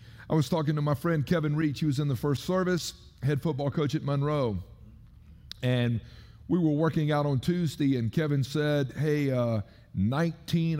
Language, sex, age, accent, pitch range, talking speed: English, male, 50-69, American, 125-170 Hz, 180 wpm